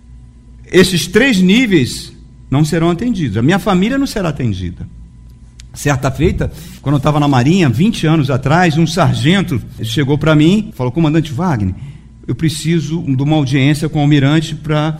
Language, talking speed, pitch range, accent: Portuguese, 160 wpm, 150-225 Hz, Brazilian